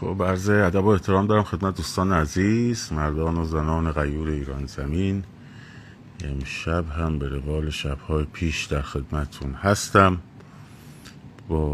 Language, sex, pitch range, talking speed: Persian, male, 75-100 Hz, 125 wpm